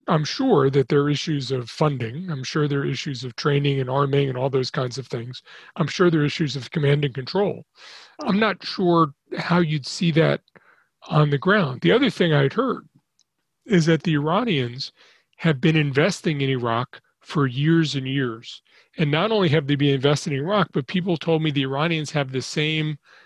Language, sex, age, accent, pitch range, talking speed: English, male, 40-59, American, 140-165 Hz, 200 wpm